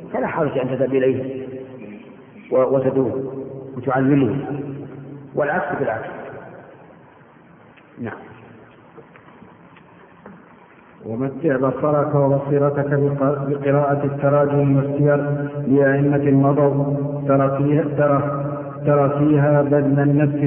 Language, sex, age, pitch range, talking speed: Arabic, male, 50-69, 140-145 Hz, 75 wpm